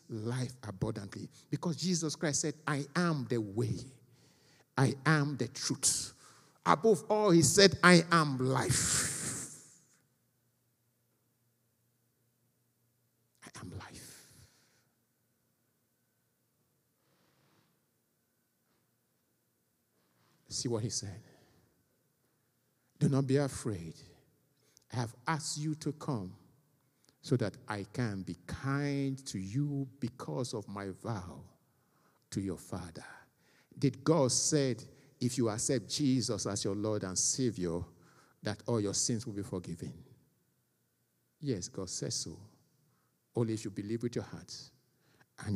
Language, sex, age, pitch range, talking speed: English, male, 50-69, 105-140 Hz, 110 wpm